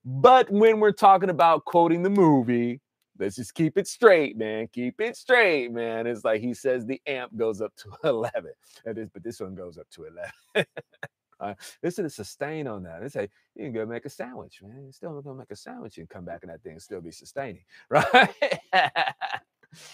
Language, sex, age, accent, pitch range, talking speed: English, male, 30-49, American, 110-150 Hz, 215 wpm